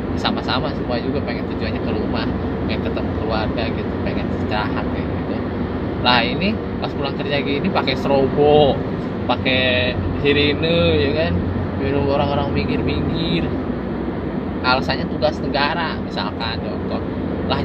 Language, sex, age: Indonesian, male, 20-39